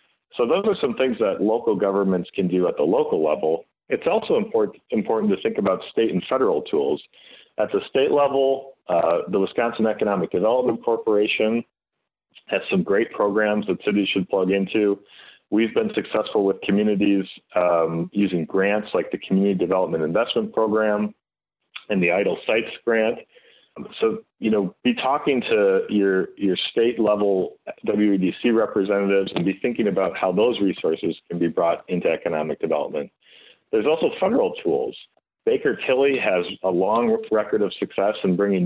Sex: male